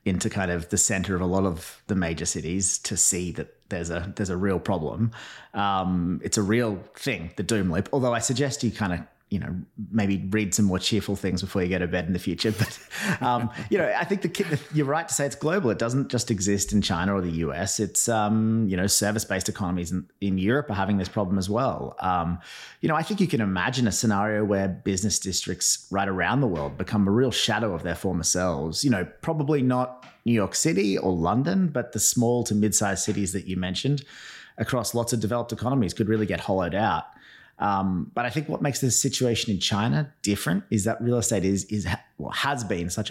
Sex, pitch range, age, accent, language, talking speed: male, 90-115 Hz, 30-49, Australian, English, 225 wpm